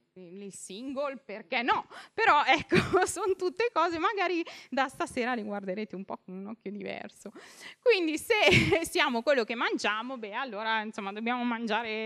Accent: native